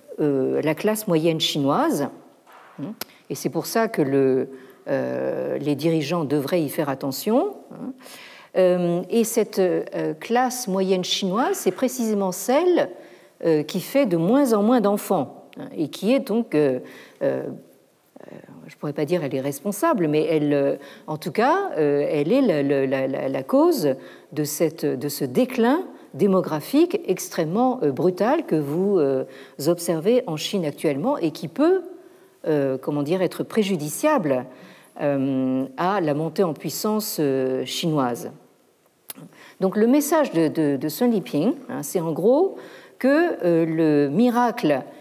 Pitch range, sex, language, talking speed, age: 150-240 Hz, female, French, 140 wpm, 50-69